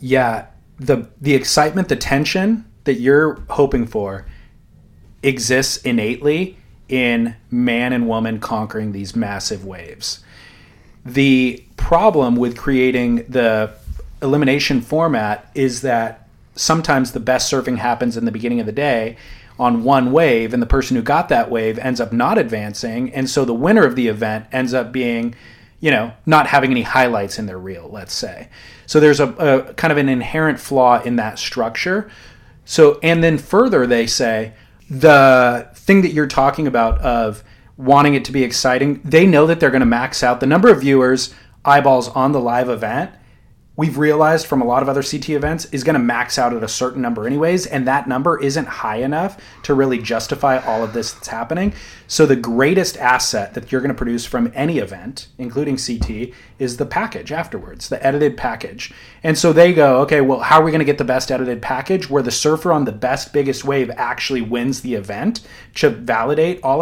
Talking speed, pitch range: 180 wpm, 120-145 Hz